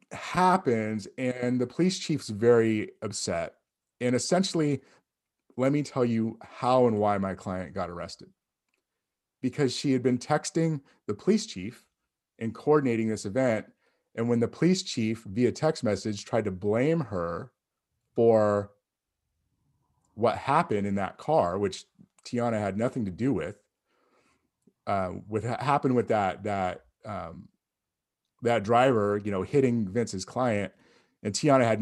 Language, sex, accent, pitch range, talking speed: English, male, American, 105-135 Hz, 140 wpm